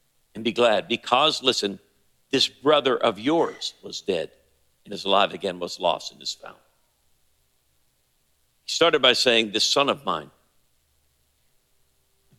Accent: American